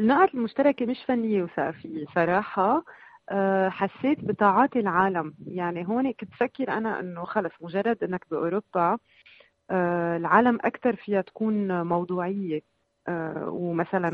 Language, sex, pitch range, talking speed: Arabic, female, 165-210 Hz, 105 wpm